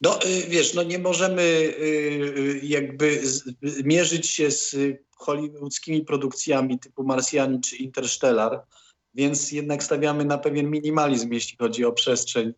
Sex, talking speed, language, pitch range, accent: male, 120 wpm, Polish, 125-145 Hz, native